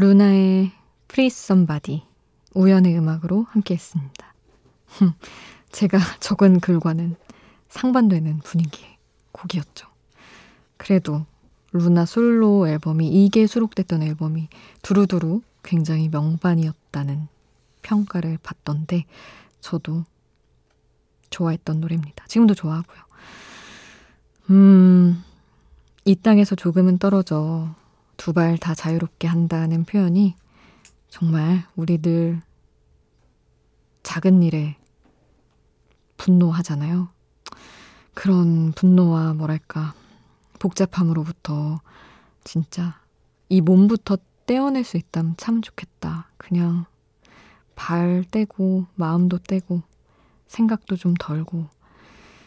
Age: 20-39